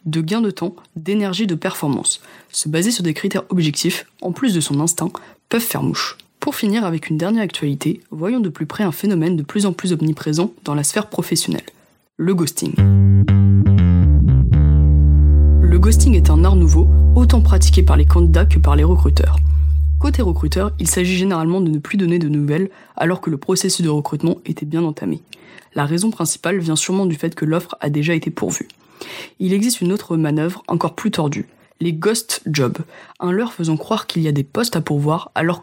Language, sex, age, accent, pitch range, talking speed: French, female, 20-39, French, 145-190 Hz, 195 wpm